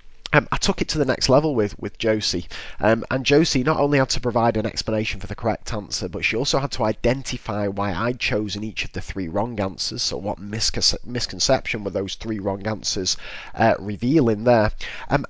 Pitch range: 100-135 Hz